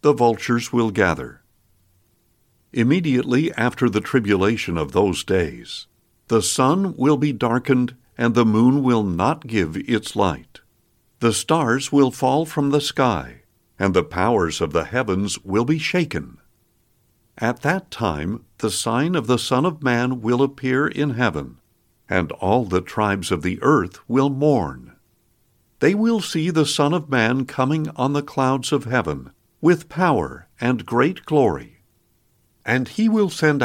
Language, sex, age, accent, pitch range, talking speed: English, male, 60-79, American, 110-150 Hz, 150 wpm